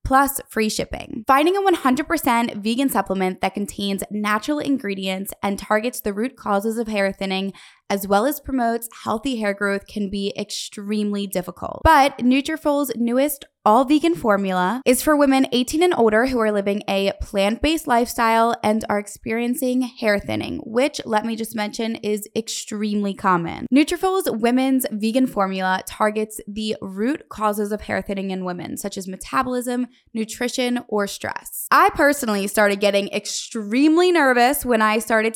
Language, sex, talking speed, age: English, female, 155 wpm, 20-39